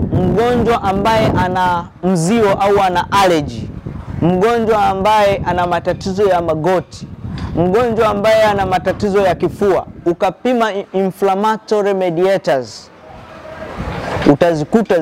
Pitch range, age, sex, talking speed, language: 170-215 Hz, 30-49, male, 90 wpm, English